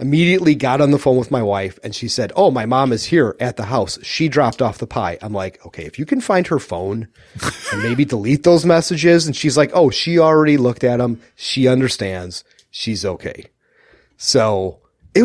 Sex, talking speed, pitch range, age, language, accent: male, 210 wpm, 100-145 Hz, 30-49, English, American